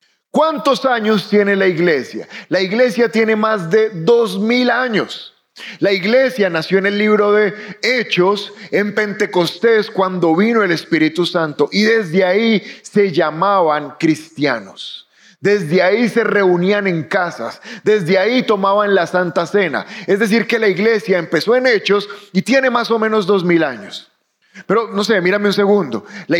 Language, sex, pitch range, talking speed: Spanish, male, 180-220 Hz, 155 wpm